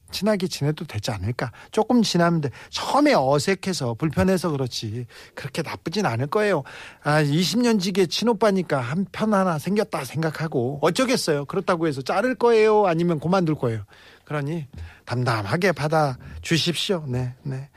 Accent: native